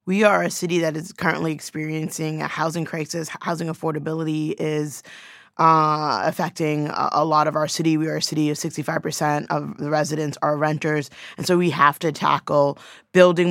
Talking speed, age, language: 175 wpm, 20-39, English